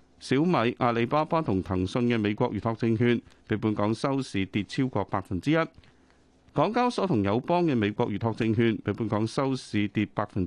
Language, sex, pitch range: Chinese, male, 100-145 Hz